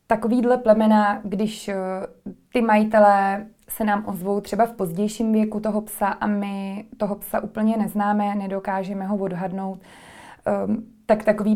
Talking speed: 130 wpm